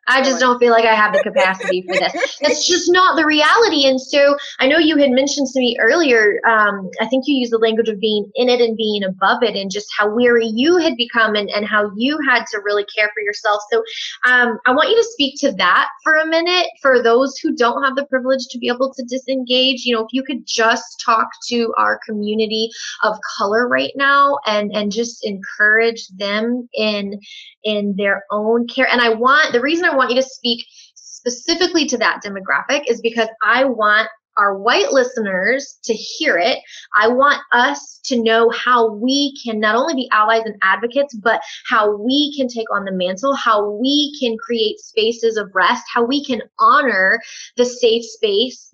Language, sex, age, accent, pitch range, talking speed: English, female, 20-39, American, 210-265 Hz, 205 wpm